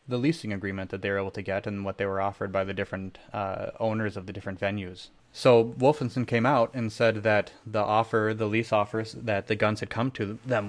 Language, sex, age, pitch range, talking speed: English, male, 20-39, 100-115 Hz, 235 wpm